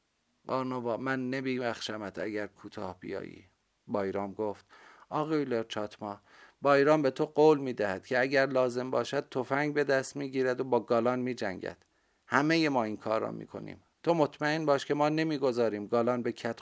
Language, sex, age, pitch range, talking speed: Persian, male, 50-69, 110-130 Hz, 170 wpm